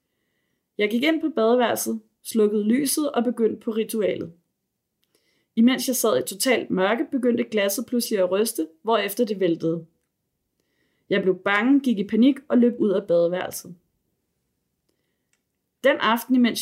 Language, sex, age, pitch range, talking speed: Danish, female, 30-49, 195-245 Hz, 140 wpm